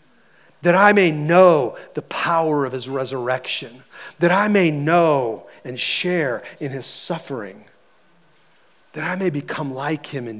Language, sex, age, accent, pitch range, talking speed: English, male, 40-59, American, 135-175 Hz, 145 wpm